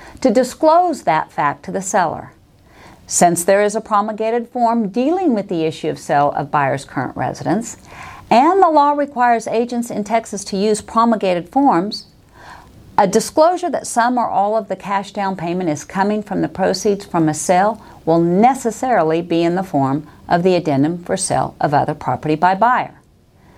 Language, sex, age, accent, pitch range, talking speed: English, female, 50-69, American, 185-255 Hz, 175 wpm